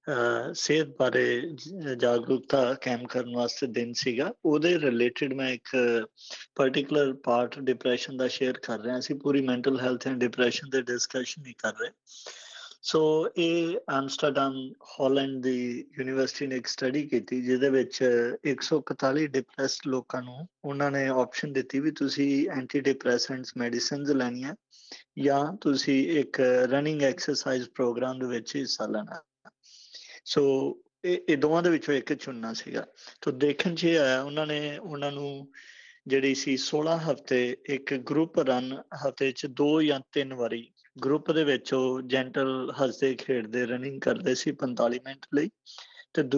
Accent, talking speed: Indian, 120 wpm